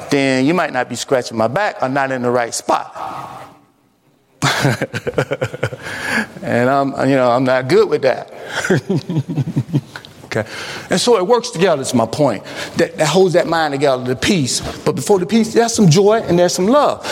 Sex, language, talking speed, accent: male, English, 175 wpm, American